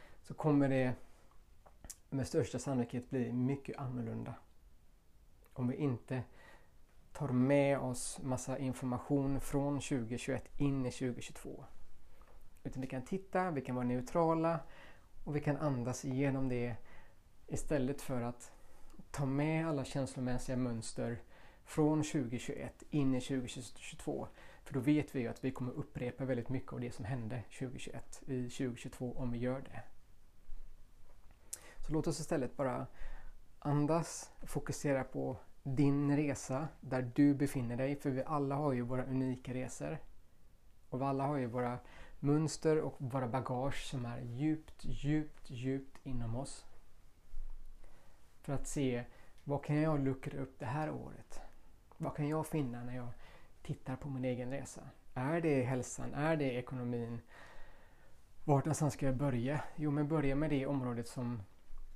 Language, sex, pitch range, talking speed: Swedish, male, 125-145 Hz, 145 wpm